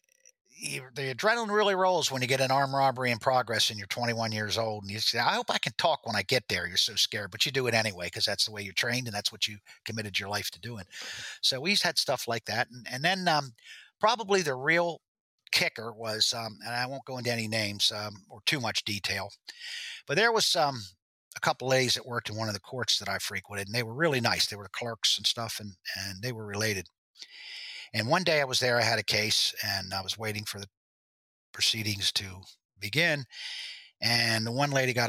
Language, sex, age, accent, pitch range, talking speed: English, male, 50-69, American, 105-130 Hz, 235 wpm